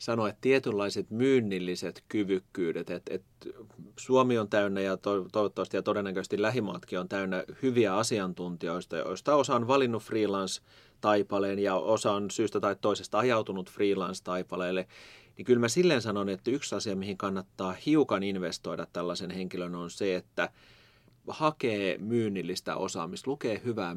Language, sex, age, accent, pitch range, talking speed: Finnish, male, 30-49, native, 90-115 Hz, 135 wpm